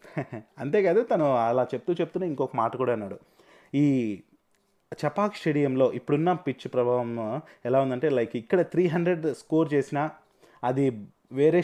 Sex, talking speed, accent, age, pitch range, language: male, 125 wpm, native, 30-49, 120-155 Hz, Telugu